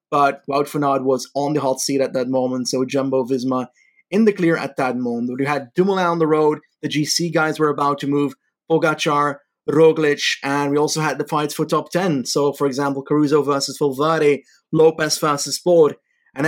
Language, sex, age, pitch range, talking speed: English, male, 30-49, 135-165 Hz, 195 wpm